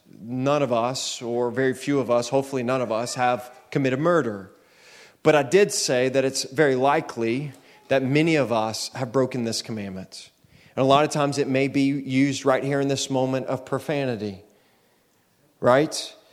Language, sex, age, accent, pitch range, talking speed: English, male, 30-49, American, 130-160 Hz, 175 wpm